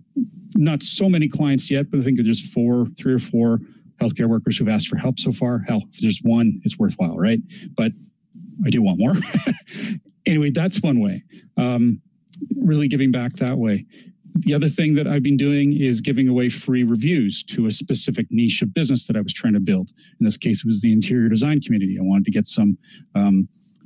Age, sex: 40-59, male